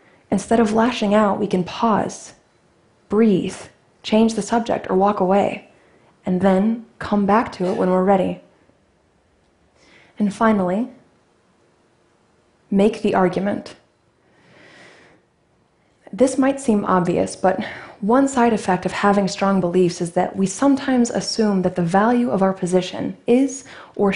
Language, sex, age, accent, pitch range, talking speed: Portuguese, female, 20-39, American, 185-225 Hz, 130 wpm